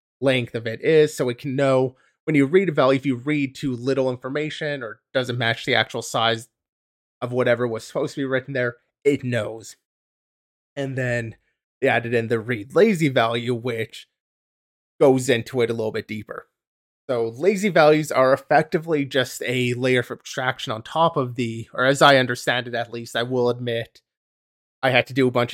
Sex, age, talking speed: male, 30-49, 195 wpm